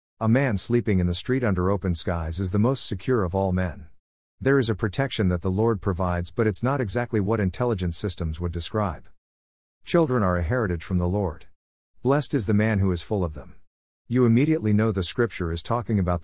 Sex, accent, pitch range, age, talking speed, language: male, American, 90-115 Hz, 50-69, 210 wpm, English